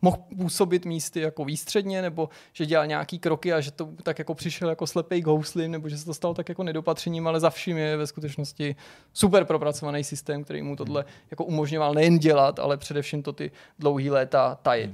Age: 20-39